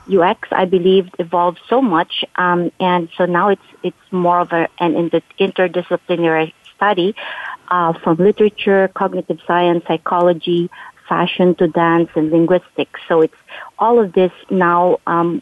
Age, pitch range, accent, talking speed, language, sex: 40-59, 165-180 Hz, Filipino, 140 wpm, English, female